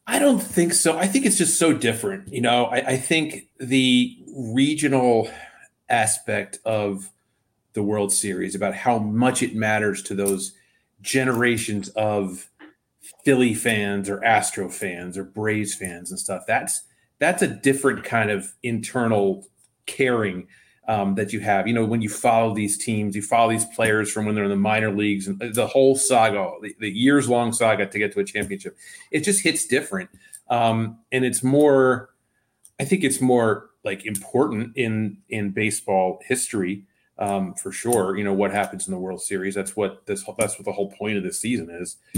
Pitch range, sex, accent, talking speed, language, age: 100-130 Hz, male, American, 180 wpm, English, 40-59